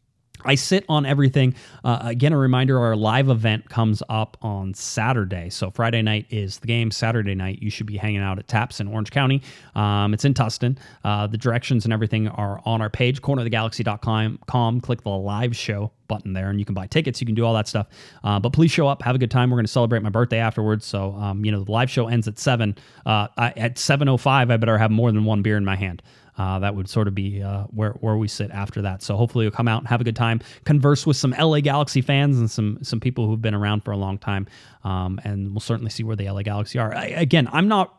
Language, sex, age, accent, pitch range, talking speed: English, male, 30-49, American, 105-130 Hz, 250 wpm